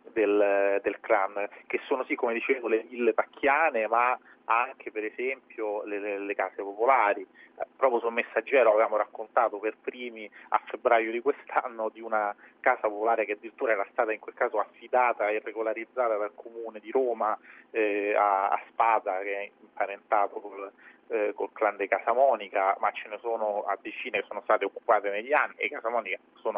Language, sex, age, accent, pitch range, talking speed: Italian, male, 30-49, native, 105-125 Hz, 175 wpm